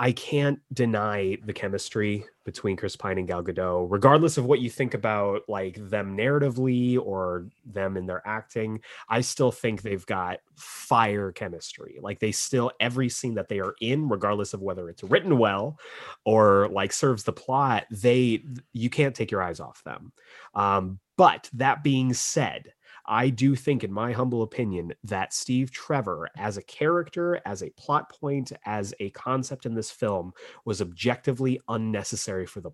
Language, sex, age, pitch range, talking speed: English, male, 30-49, 105-135 Hz, 170 wpm